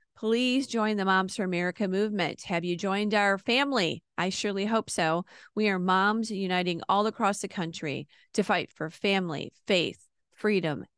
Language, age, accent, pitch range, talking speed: English, 40-59, American, 170-215 Hz, 165 wpm